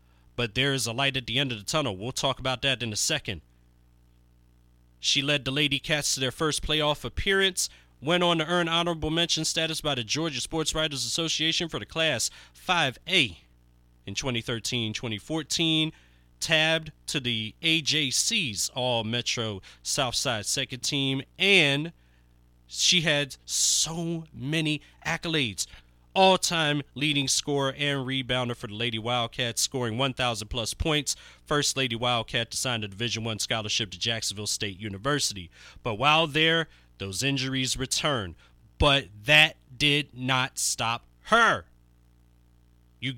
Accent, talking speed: American, 140 wpm